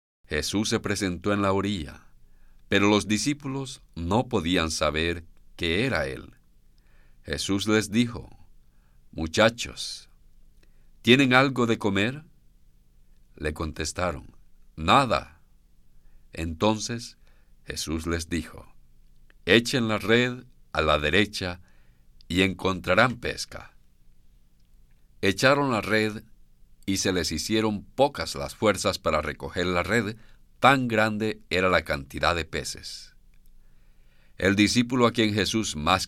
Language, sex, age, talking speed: English, male, 50-69, 115 wpm